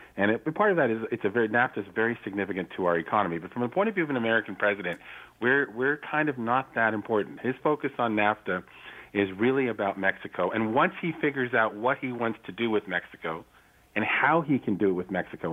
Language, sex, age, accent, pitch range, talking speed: English, male, 40-59, American, 95-120 Hz, 235 wpm